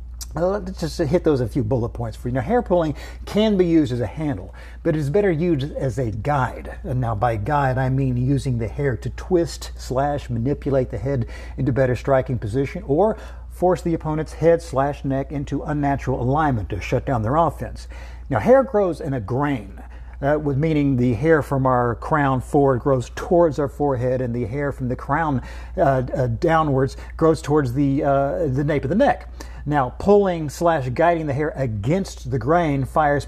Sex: male